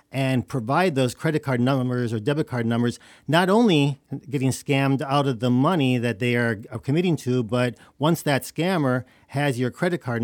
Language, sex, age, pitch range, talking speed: English, male, 40-59, 120-150 Hz, 180 wpm